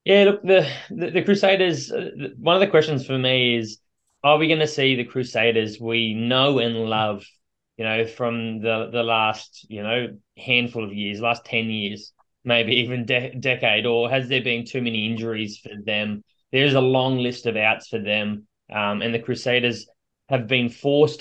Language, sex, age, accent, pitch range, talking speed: English, male, 20-39, Australian, 110-125 Hz, 185 wpm